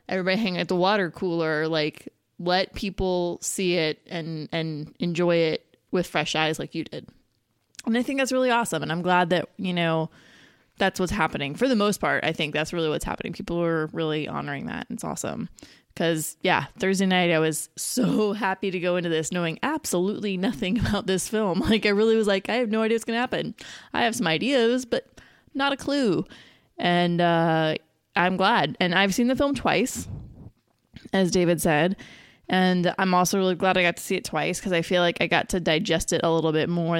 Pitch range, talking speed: 160-205 Hz, 210 wpm